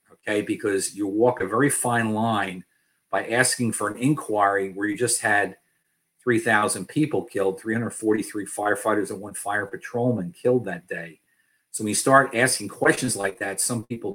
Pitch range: 105-125 Hz